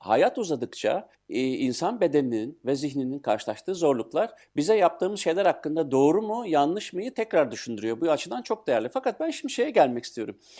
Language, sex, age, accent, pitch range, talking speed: Turkish, male, 60-79, native, 130-180 Hz, 160 wpm